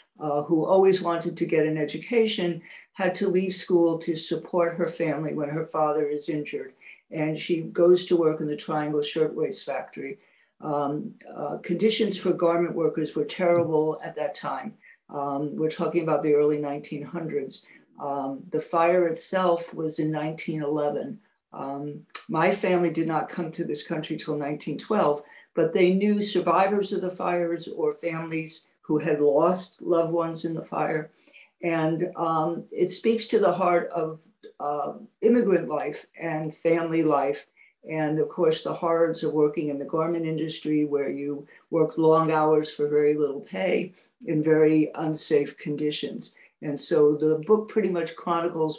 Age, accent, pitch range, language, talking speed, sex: 60-79, American, 150-175 Hz, English, 155 wpm, female